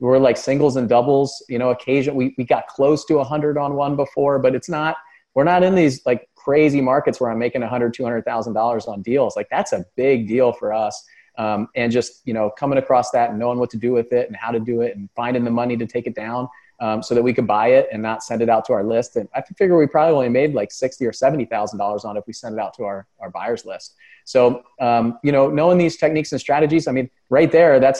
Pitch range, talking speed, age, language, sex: 115-135 Hz, 265 wpm, 30-49, English, male